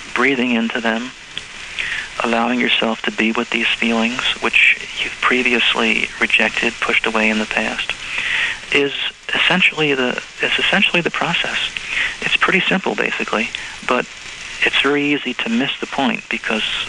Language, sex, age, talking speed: English, male, 40-59, 140 wpm